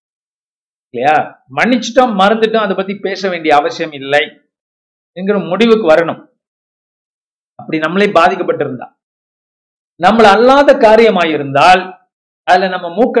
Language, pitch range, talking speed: Tamil, 155-215 Hz, 95 wpm